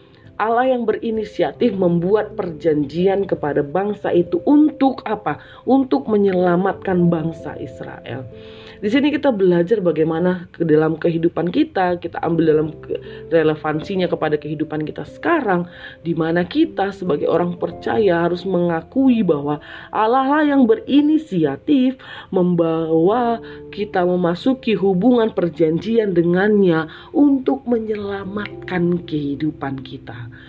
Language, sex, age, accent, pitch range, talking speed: Indonesian, female, 30-49, native, 165-235 Hz, 105 wpm